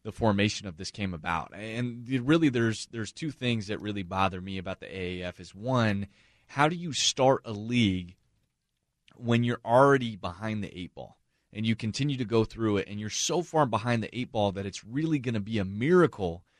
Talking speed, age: 205 wpm, 30-49